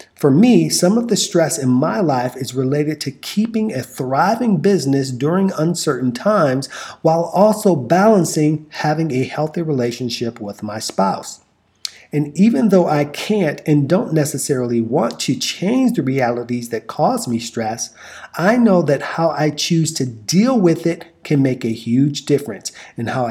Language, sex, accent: English, male, American